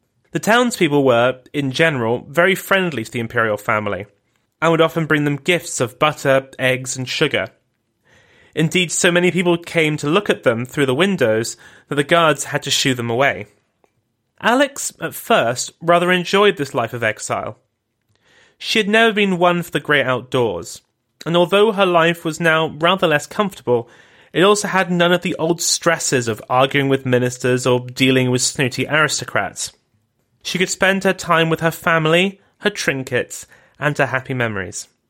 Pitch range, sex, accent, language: 130-175 Hz, male, British, English